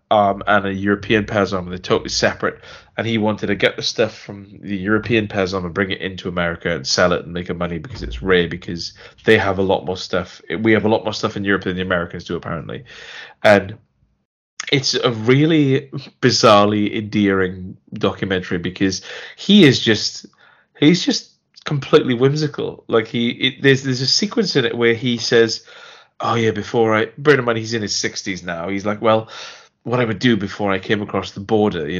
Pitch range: 95-115 Hz